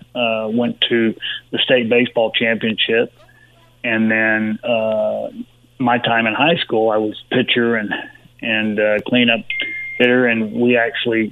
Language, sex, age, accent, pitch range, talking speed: English, male, 30-49, American, 115-125 Hz, 140 wpm